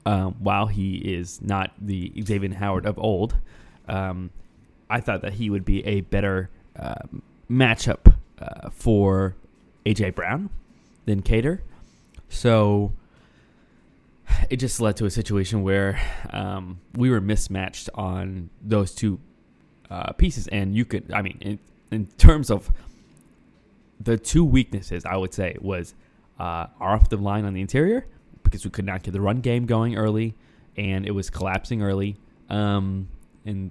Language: English